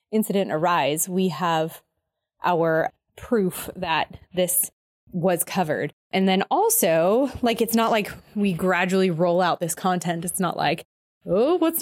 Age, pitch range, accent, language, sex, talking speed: 20-39, 175-225 Hz, American, English, female, 140 wpm